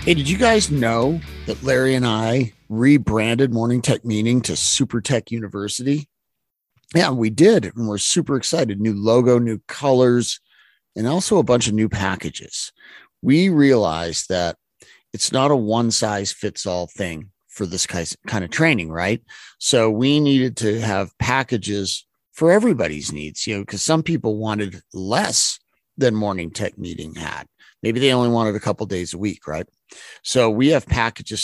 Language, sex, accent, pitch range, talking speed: English, male, American, 100-130 Hz, 160 wpm